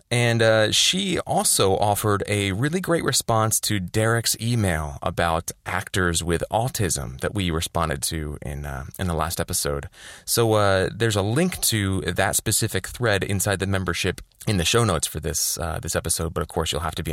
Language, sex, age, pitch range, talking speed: English, male, 30-49, 85-115 Hz, 190 wpm